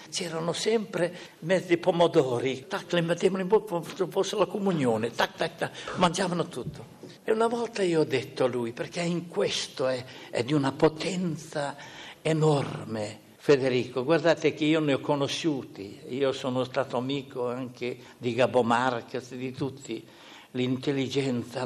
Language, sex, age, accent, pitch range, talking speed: Italian, male, 60-79, native, 125-165 Hz, 145 wpm